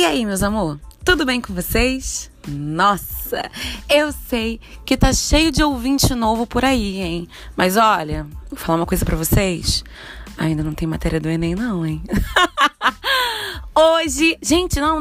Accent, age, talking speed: Brazilian, 20-39, 155 wpm